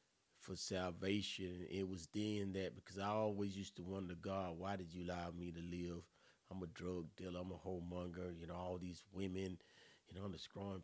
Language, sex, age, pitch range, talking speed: English, male, 30-49, 95-115 Hz, 205 wpm